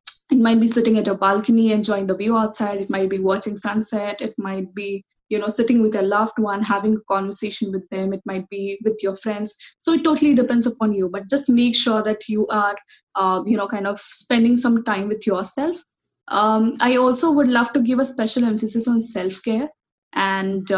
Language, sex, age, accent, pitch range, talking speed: English, female, 10-29, Indian, 200-235 Hz, 210 wpm